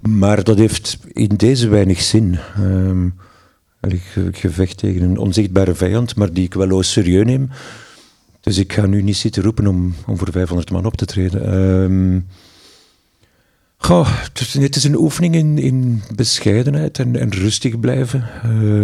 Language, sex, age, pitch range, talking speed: Dutch, male, 50-69, 95-115 Hz, 155 wpm